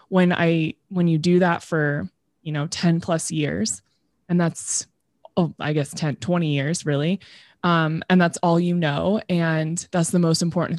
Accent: American